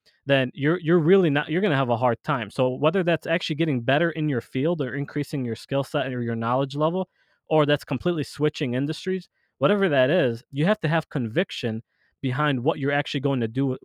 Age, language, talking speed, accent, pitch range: 20-39, English, 215 wpm, American, 125-160 Hz